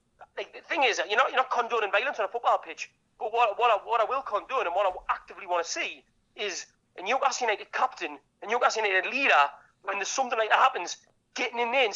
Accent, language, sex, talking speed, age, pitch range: British, English, male, 240 wpm, 30-49, 185-245 Hz